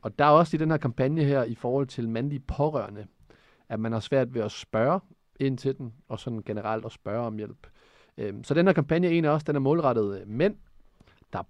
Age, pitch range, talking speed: 40-59, 110-145 Hz, 220 wpm